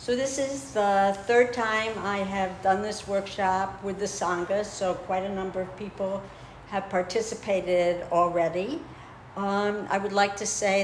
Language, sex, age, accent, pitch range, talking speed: English, female, 60-79, American, 180-215 Hz, 160 wpm